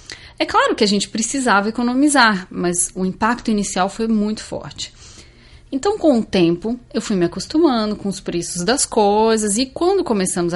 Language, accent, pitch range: Portuguese, Brazilian, 175-235 Hz